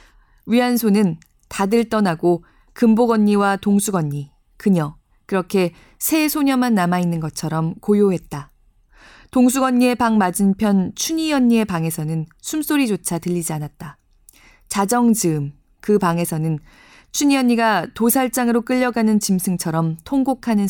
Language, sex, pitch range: Korean, female, 170-235 Hz